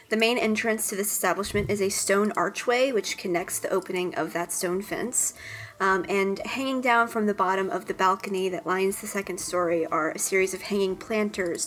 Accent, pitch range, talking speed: American, 185-220 Hz, 200 wpm